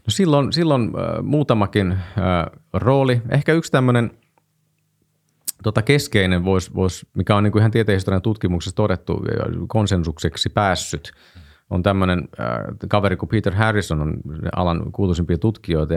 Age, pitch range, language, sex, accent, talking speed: 30-49, 85-115 Hz, Finnish, male, native, 130 wpm